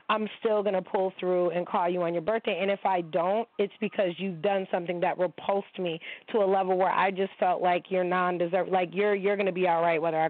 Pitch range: 175-215 Hz